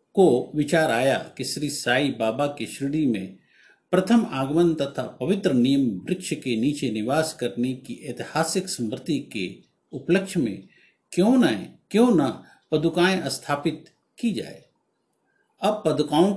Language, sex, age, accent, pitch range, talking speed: Hindi, male, 50-69, native, 130-170 Hz, 135 wpm